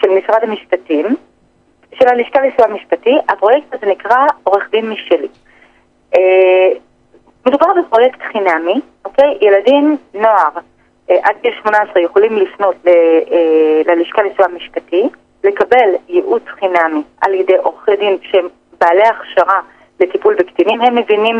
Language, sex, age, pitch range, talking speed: Hebrew, female, 30-49, 180-240 Hz, 125 wpm